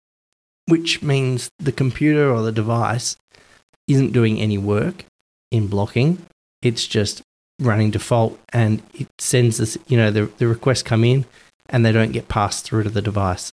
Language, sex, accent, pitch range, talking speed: English, male, Australian, 110-140 Hz, 165 wpm